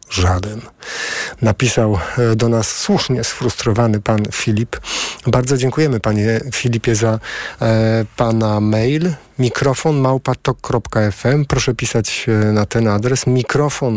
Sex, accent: male, native